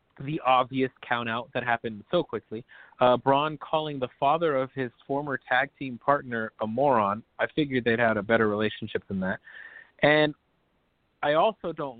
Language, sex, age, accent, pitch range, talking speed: English, male, 30-49, American, 130-195 Hz, 165 wpm